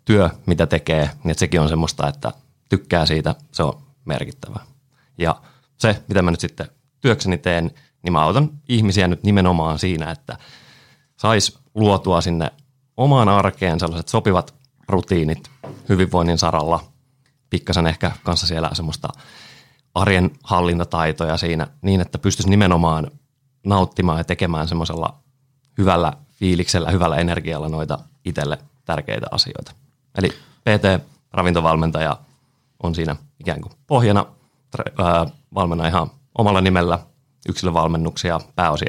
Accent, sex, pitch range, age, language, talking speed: native, male, 85-130 Hz, 30-49, Finnish, 115 wpm